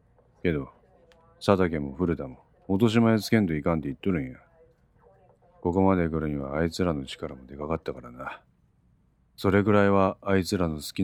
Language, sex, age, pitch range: Japanese, male, 40-59, 80-105 Hz